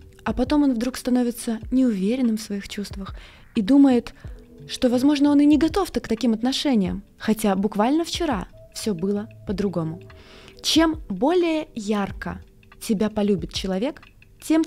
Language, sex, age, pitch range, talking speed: Russian, female, 20-39, 200-265 Hz, 135 wpm